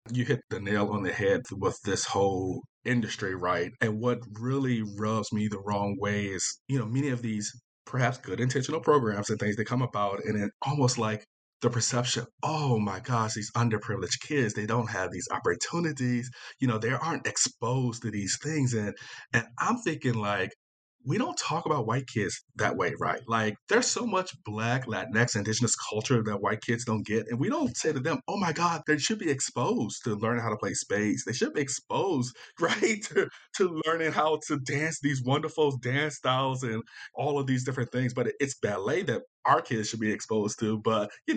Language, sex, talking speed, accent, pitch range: English, male, 200 wpm, American, 105-130 Hz